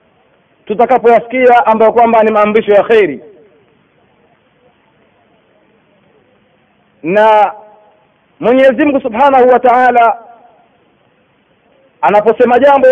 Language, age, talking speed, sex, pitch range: Swahili, 40-59, 65 wpm, male, 225-285 Hz